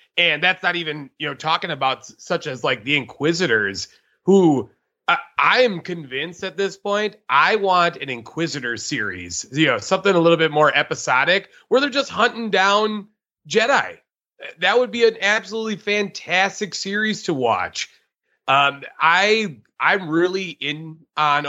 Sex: male